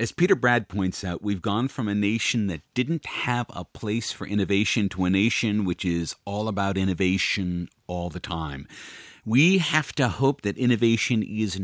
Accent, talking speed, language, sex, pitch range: American, 180 wpm, English, male, 90-115 Hz